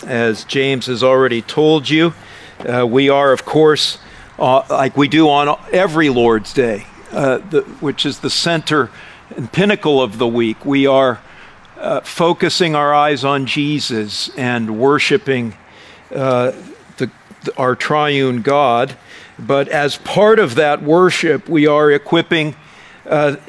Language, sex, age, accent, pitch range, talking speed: English, male, 50-69, American, 130-155 Hz, 135 wpm